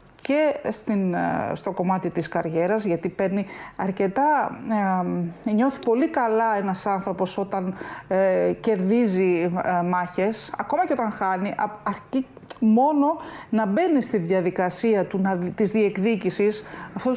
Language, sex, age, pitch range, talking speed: Greek, female, 40-59, 190-250 Hz, 125 wpm